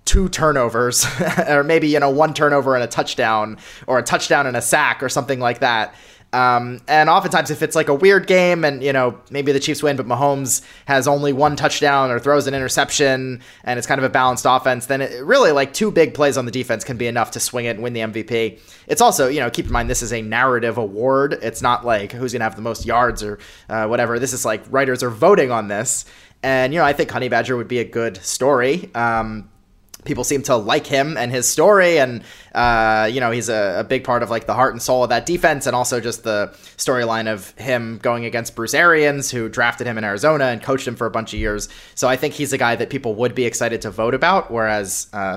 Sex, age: male, 20-39